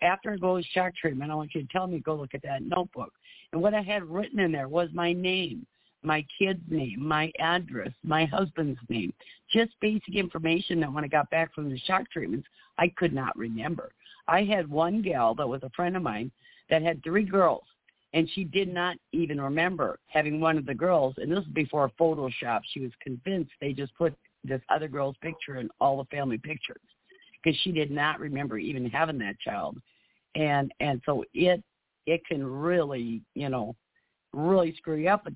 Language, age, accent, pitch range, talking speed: English, 60-79, American, 135-175 Hz, 200 wpm